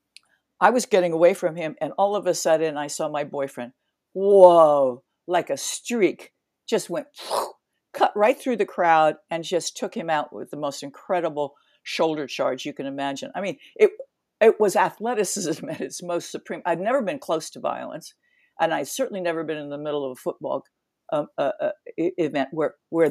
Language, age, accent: English, 60-79, American